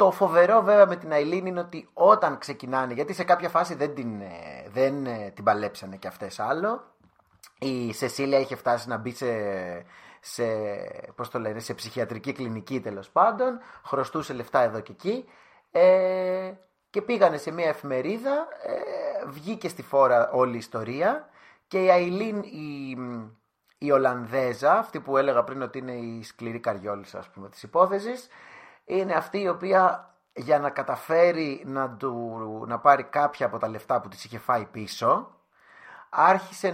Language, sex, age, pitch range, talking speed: Greek, male, 30-49, 120-175 Hz, 140 wpm